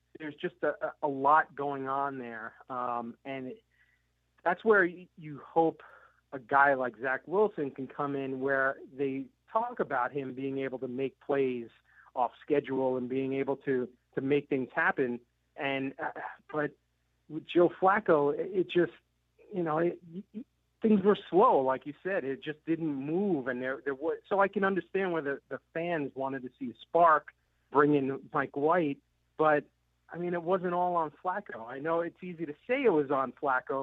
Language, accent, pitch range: English, American, 135-170 Hz